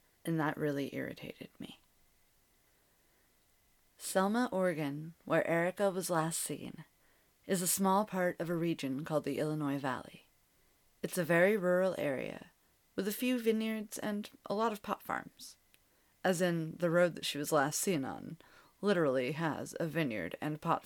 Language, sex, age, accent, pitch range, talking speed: English, female, 30-49, American, 155-195 Hz, 155 wpm